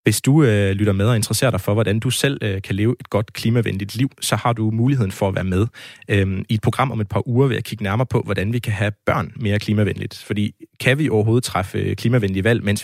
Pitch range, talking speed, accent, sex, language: 100-120 Hz, 245 wpm, native, male, Danish